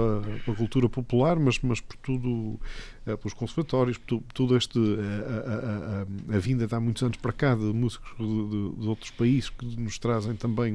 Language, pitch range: Portuguese, 115-140 Hz